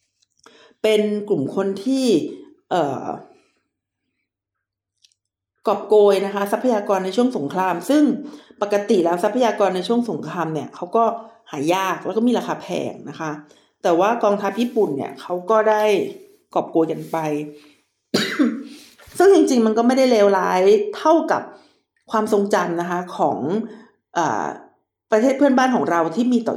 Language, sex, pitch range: Thai, female, 180-245 Hz